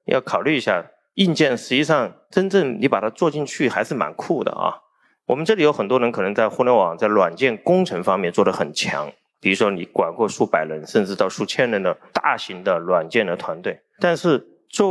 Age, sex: 30-49, male